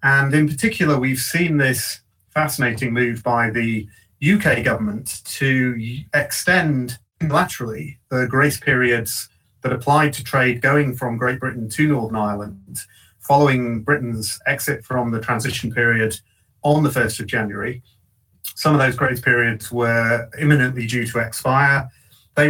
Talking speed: 140 wpm